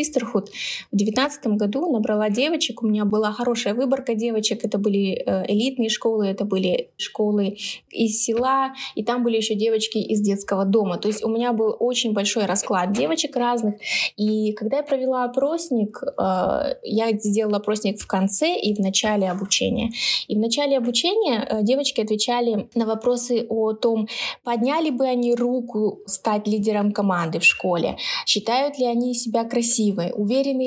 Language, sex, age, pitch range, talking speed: Russian, female, 20-39, 210-245 Hz, 150 wpm